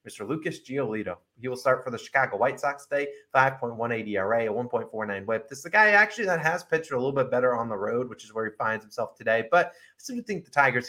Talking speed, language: 245 wpm, English